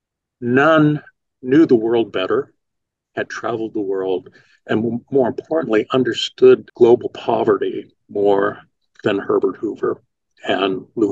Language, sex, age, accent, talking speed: English, male, 50-69, American, 115 wpm